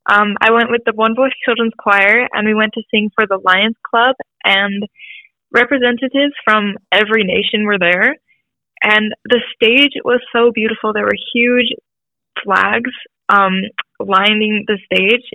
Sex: female